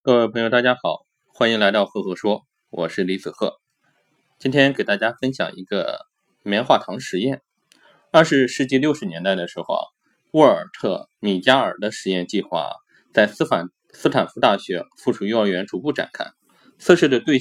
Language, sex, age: Chinese, male, 20-39